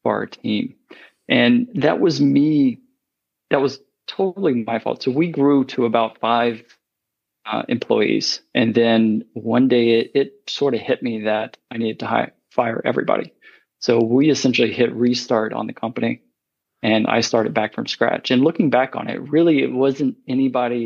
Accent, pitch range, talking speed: American, 110-130 Hz, 170 wpm